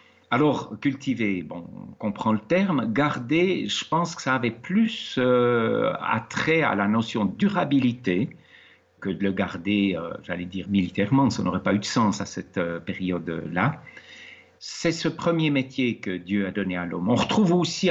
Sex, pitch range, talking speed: male, 100-130 Hz, 170 wpm